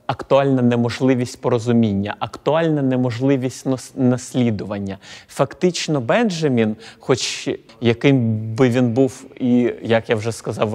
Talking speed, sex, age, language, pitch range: 105 wpm, male, 30-49, Ukrainian, 115-135 Hz